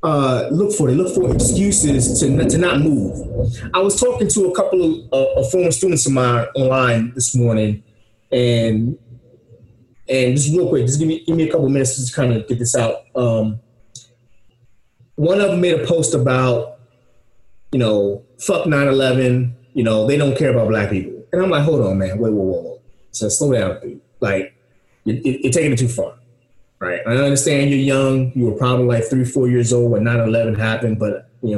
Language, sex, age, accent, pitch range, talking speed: English, male, 30-49, American, 115-140 Hz, 195 wpm